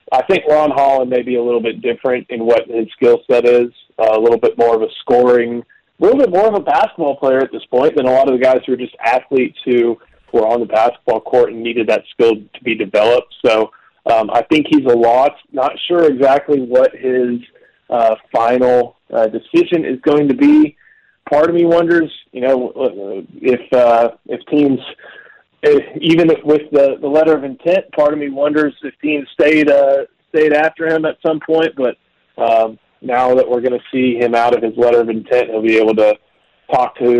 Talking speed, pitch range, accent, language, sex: 215 wpm, 115-150 Hz, American, English, male